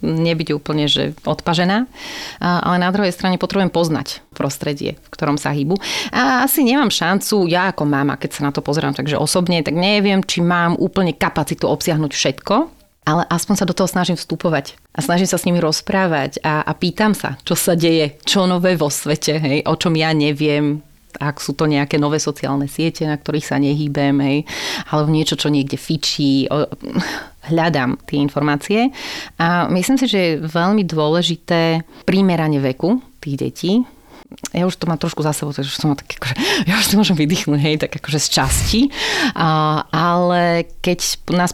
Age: 30-49